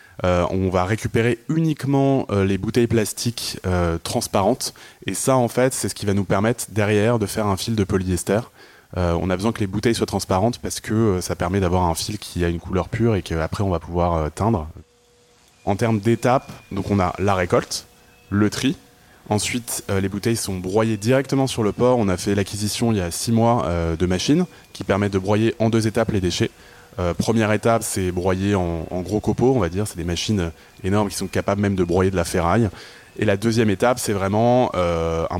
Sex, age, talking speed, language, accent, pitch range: male, 20-39, 220 wpm, French, French, 90-115 Hz